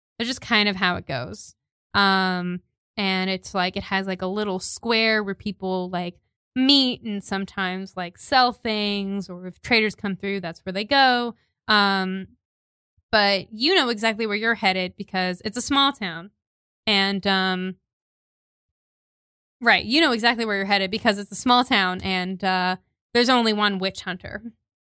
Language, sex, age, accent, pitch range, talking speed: English, female, 20-39, American, 185-215 Hz, 165 wpm